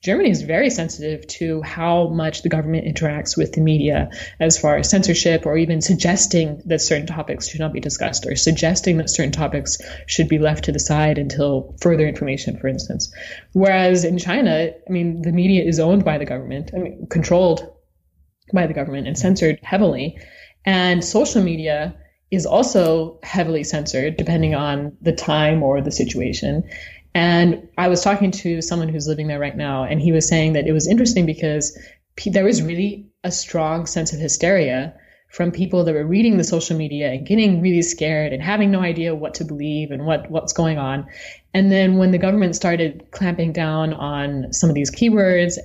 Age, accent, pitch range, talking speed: 20-39, American, 150-180 Hz, 185 wpm